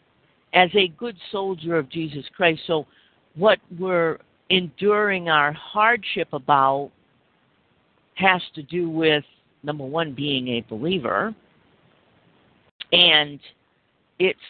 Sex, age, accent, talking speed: female, 50-69, American, 105 wpm